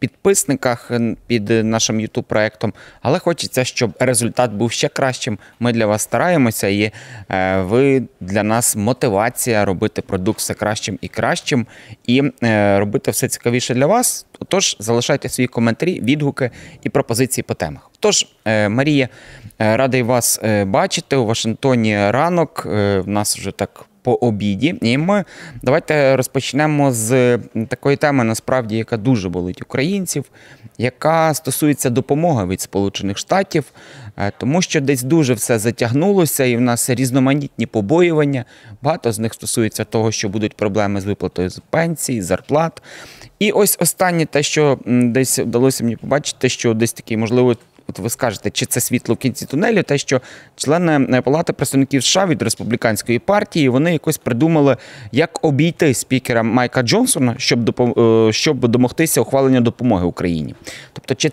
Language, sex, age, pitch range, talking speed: Ukrainian, male, 20-39, 110-145 Hz, 140 wpm